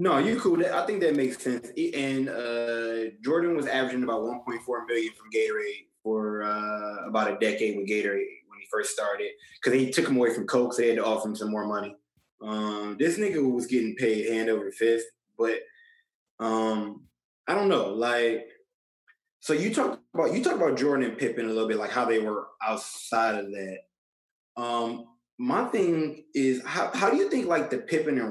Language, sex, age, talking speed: English, male, 20-39, 200 wpm